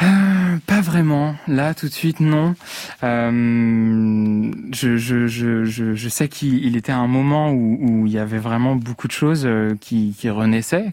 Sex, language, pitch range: male, French, 115-140 Hz